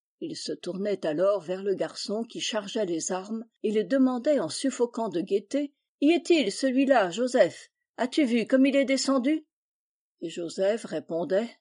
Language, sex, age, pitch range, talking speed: French, female, 50-69, 195-275 Hz, 160 wpm